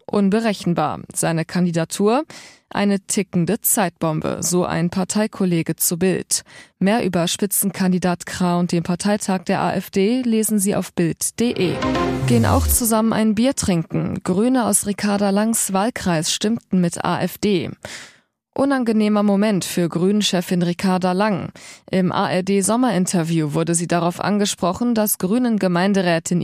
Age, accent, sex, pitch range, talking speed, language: 20-39, German, female, 175-210 Hz, 120 wpm, German